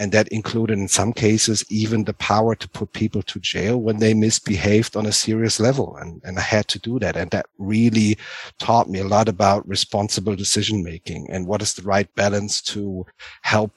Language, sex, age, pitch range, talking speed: English, male, 50-69, 95-105 Hz, 205 wpm